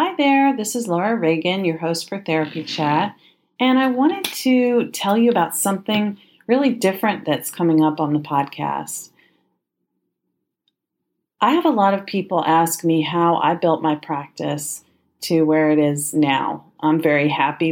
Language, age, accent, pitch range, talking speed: English, 40-59, American, 155-190 Hz, 165 wpm